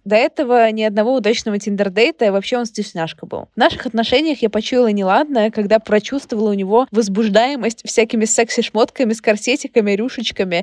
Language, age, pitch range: Russian, 20-39, 200-255 Hz